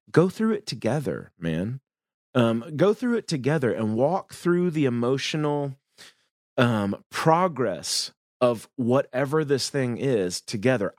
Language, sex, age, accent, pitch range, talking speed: English, male, 30-49, American, 110-150 Hz, 125 wpm